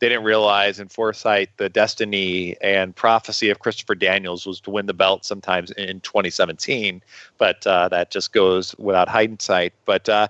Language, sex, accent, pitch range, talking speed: English, male, American, 95-115 Hz, 165 wpm